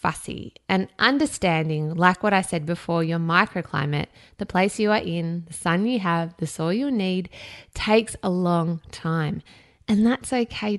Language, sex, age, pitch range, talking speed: English, female, 20-39, 170-220 Hz, 155 wpm